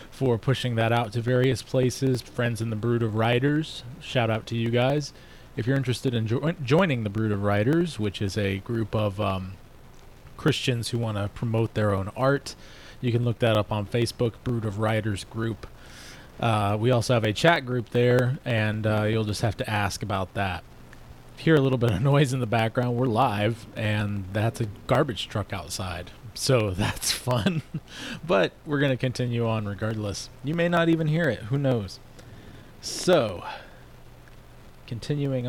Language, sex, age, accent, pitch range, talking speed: English, male, 20-39, American, 110-130 Hz, 180 wpm